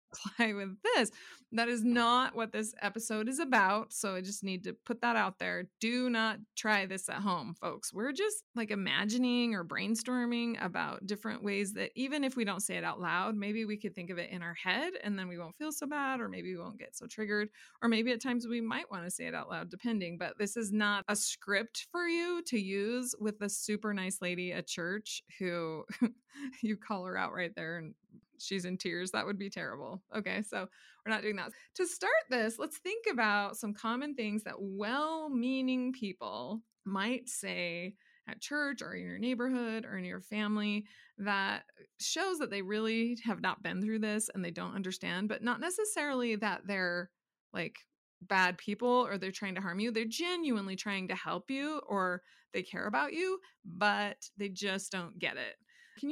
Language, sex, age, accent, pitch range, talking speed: English, female, 20-39, American, 195-245 Hz, 200 wpm